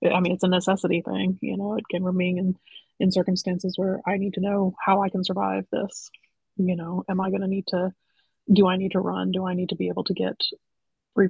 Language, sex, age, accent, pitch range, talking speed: English, female, 20-39, American, 180-200 Hz, 245 wpm